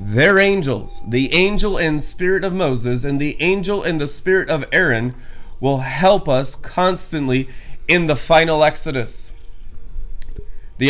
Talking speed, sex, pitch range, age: 140 wpm, male, 130-160 Hz, 30-49